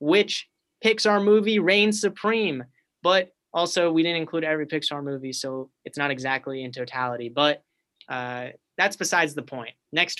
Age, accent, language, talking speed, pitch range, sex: 30-49, American, English, 155 wpm, 140-175 Hz, male